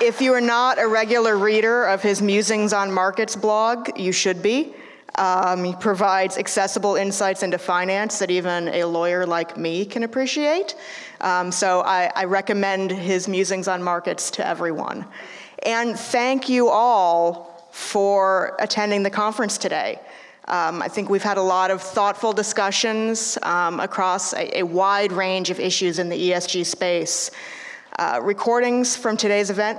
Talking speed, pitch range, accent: 155 wpm, 185-220 Hz, American